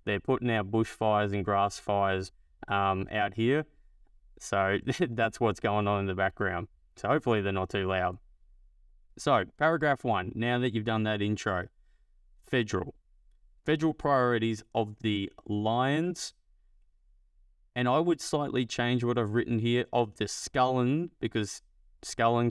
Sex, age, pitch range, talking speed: male, 20-39, 95-120 Hz, 140 wpm